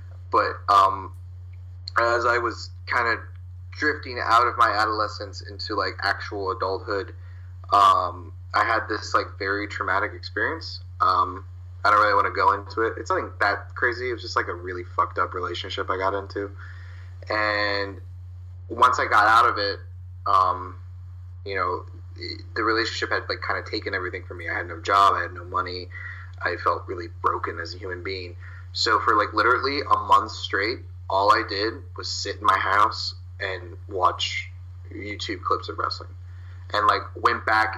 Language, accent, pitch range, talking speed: English, American, 90-100 Hz, 175 wpm